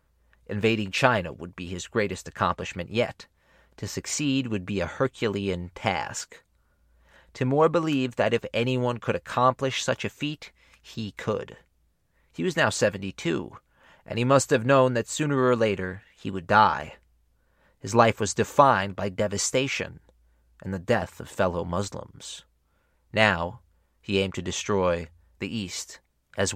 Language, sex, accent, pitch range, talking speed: English, male, American, 95-130 Hz, 140 wpm